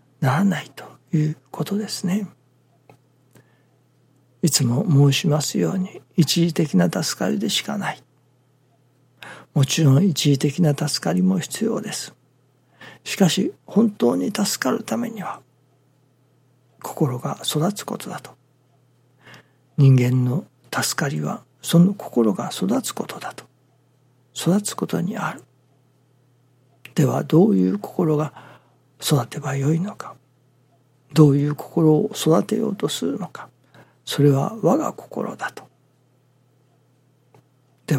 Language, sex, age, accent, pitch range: Japanese, male, 60-79, native, 130-180 Hz